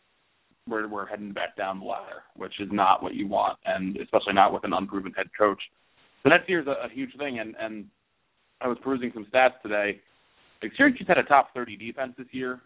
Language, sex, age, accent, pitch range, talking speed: English, male, 30-49, American, 100-120 Hz, 210 wpm